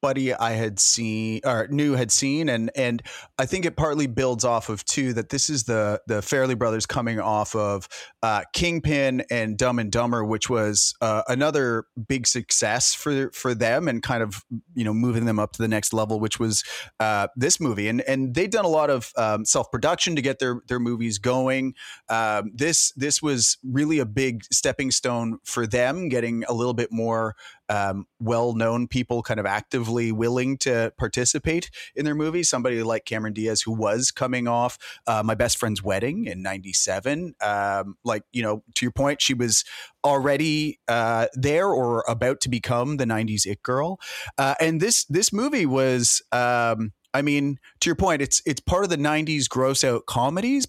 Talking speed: 190 wpm